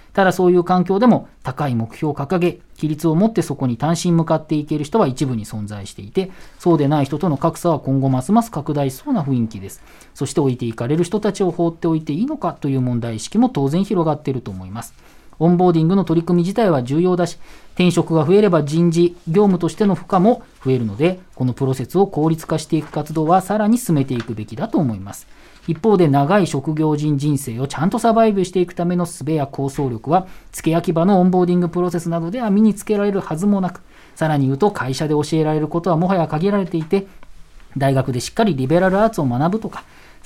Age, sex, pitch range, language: 40-59, male, 135-180 Hz, Japanese